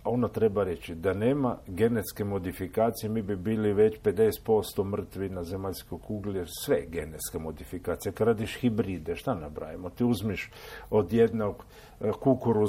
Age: 50-69